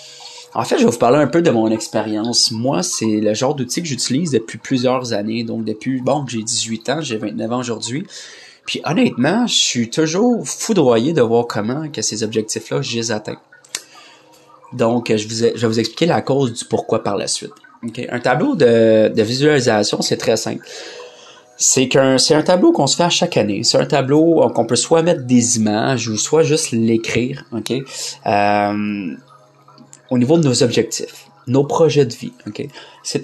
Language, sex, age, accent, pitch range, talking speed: French, male, 30-49, Canadian, 110-140 Hz, 190 wpm